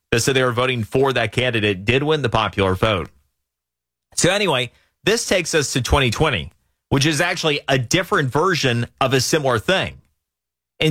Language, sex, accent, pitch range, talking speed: English, male, American, 95-155 Hz, 170 wpm